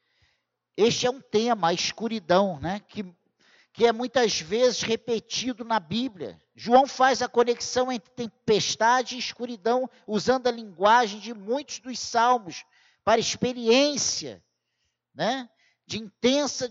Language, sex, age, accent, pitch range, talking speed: Portuguese, male, 50-69, Brazilian, 190-255 Hz, 125 wpm